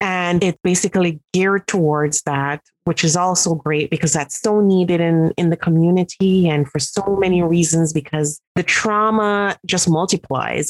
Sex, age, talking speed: female, 30-49, 155 wpm